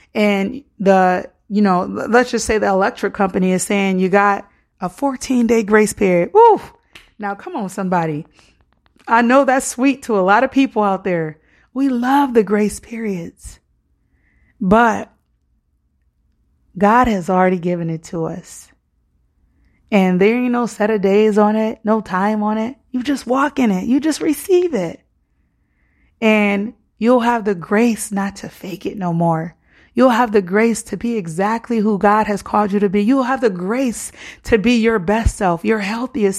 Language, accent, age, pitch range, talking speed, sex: English, American, 30-49, 180-235 Hz, 175 wpm, female